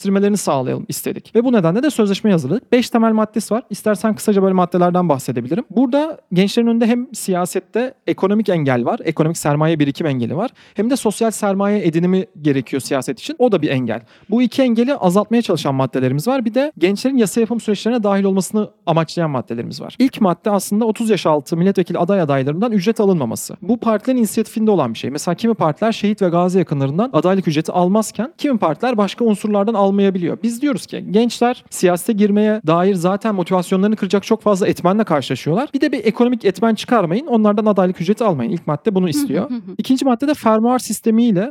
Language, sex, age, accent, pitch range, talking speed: Turkish, male, 40-59, native, 165-225 Hz, 180 wpm